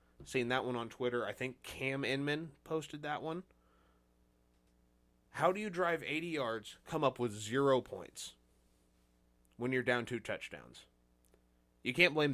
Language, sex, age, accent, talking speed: English, male, 20-39, American, 150 wpm